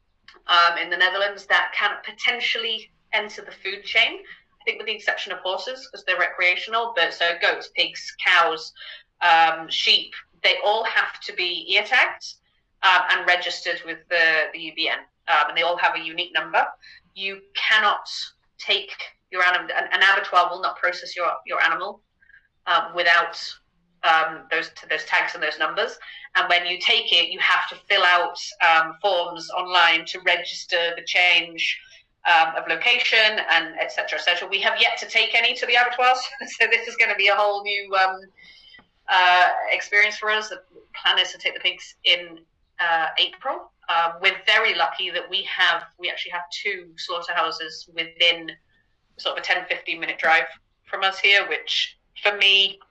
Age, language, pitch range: 30-49, English, 170-215 Hz